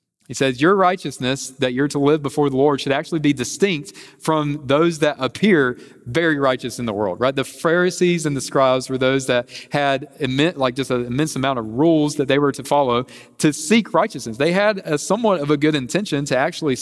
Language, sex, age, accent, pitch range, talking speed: English, male, 40-59, American, 120-145 Hz, 210 wpm